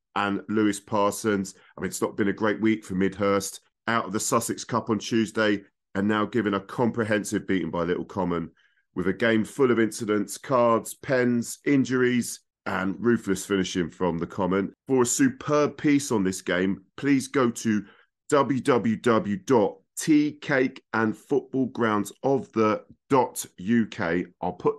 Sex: male